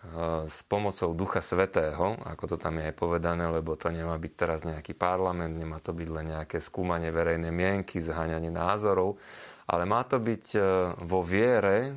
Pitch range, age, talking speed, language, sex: 85-110 Hz, 30-49, 165 wpm, Slovak, male